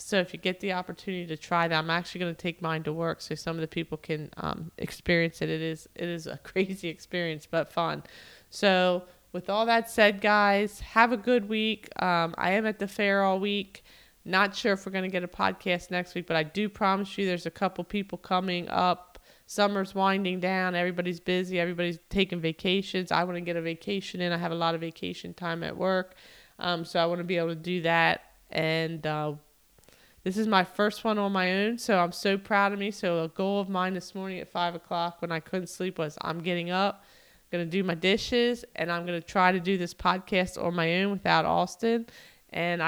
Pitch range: 170-200 Hz